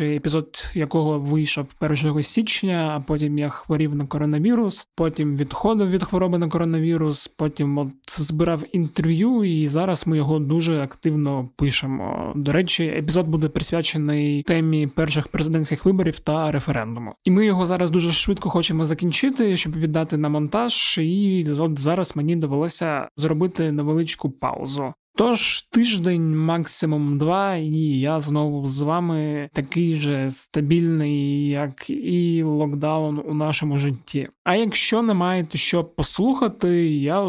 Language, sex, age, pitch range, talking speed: Ukrainian, male, 20-39, 150-175 Hz, 135 wpm